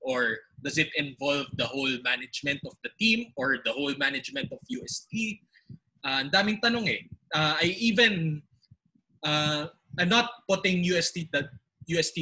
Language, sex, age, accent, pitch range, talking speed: English, male, 20-39, Filipino, 140-175 Hz, 140 wpm